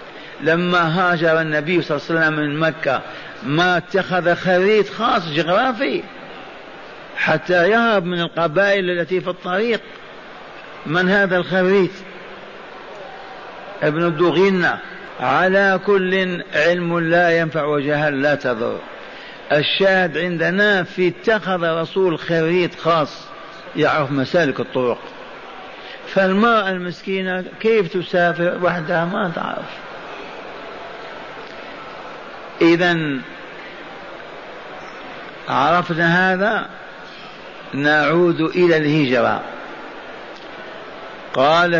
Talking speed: 85 wpm